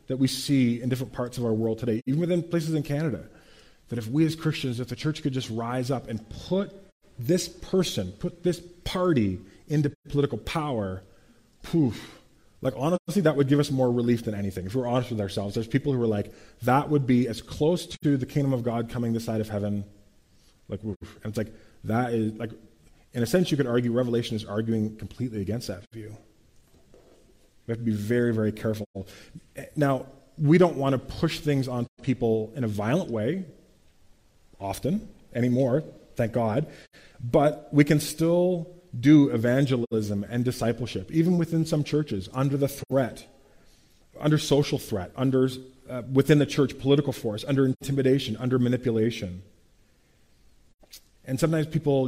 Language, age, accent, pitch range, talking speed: English, 20-39, American, 110-145 Hz, 175 wpm